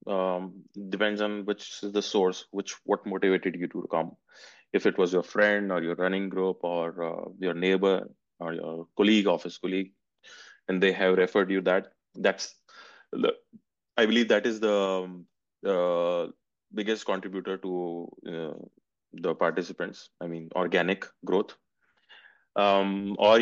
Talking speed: 145 wpm